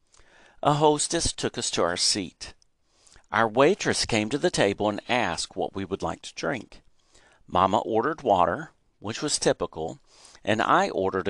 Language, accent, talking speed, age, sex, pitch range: English, American, 160 wpm, 50-69, male, 95-145 Hz